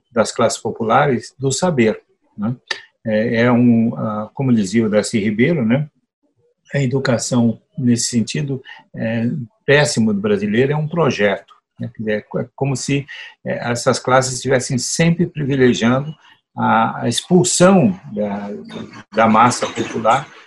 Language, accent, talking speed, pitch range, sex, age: Portuguese, Brazilian, 115 wpm, 120-180 Hz, male, 60-79